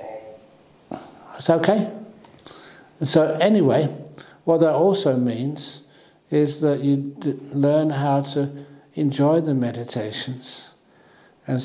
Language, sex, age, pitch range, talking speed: English, male, 60-79, 120-140 Hz, 95 wpm